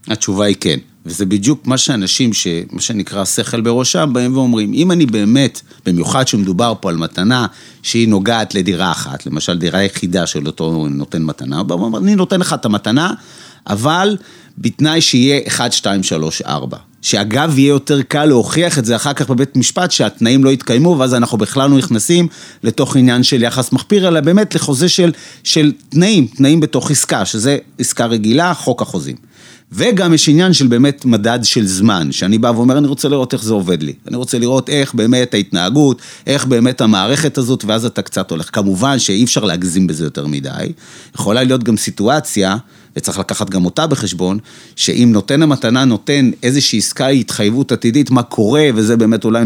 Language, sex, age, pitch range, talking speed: Hebrew, male, 30-49, 105-140 Hz, 170 wpm